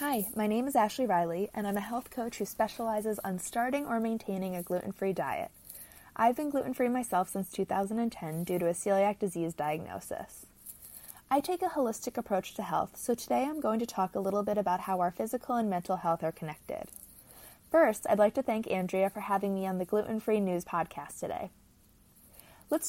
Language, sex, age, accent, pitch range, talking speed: English, female, 20-39, American, 185-235 Hz, 190 wpm